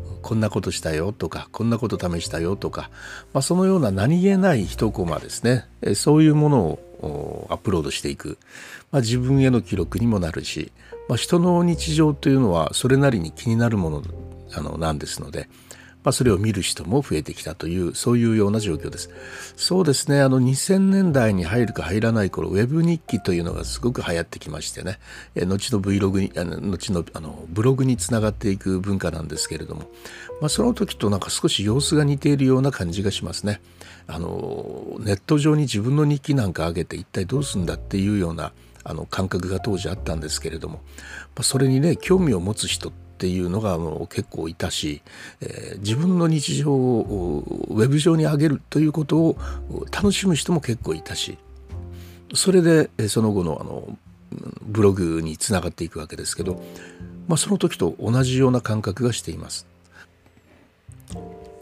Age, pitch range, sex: 60-79, 85-135 Hz, male